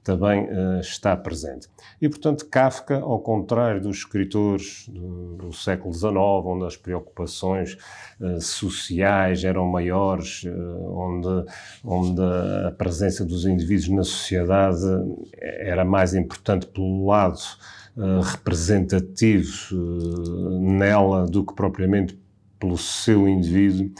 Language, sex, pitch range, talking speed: Portuguese, male, 90-105 Hz, 105 wpm